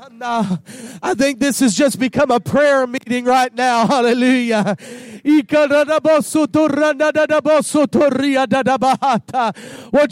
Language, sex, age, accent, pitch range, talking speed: English, male, 40-59, American, 210-290 Hz, 75 wpm